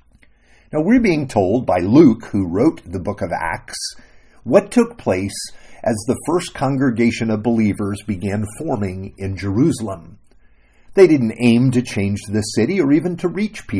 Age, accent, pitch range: 50-69, American, 100-150 Hz